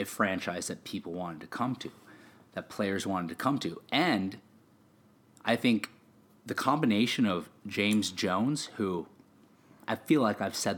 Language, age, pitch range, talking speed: English, 30-49, 100-130 Hz, 150 wpm